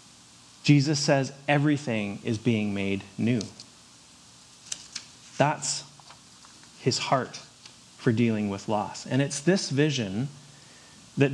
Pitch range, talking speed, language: 115-145 Hz, 100 wpm, English